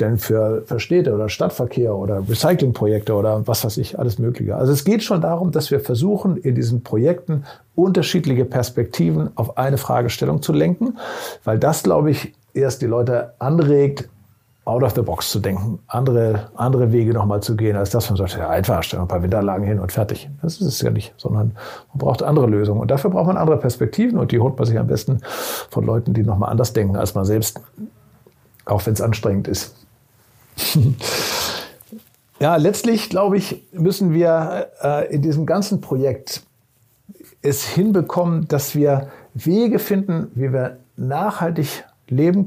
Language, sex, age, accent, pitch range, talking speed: German, male, 50-69, German, 115-165 Hz, 170 wpm